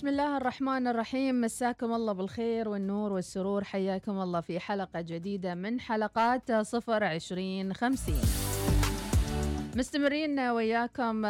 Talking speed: 110 wpm